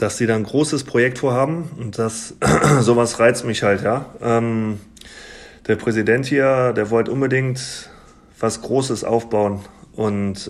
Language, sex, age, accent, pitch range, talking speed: German, male, 30-49, German, 105-135 Hz, 145 wpm